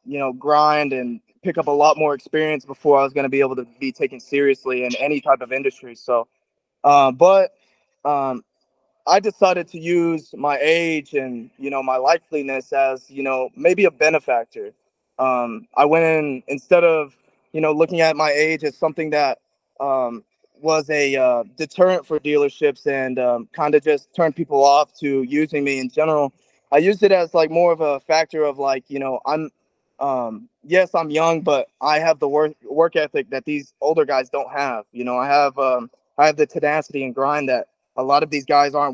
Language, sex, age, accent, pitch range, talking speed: English, male, 20-39, American, 135-160 Hz, 200 wpm